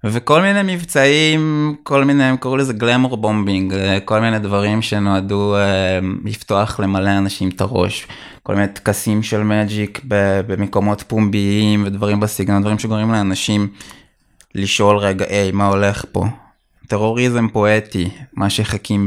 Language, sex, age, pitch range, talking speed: Hebrew, male, 20-39, 100-120 Hz, 130 wpm